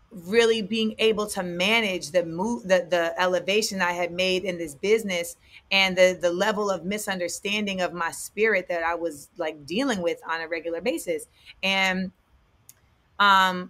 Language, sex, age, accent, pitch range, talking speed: English, female, 30-49, American, 185-225 Hz, 160 wpm